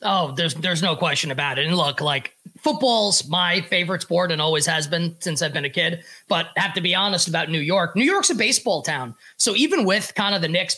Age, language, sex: 20-39, English, male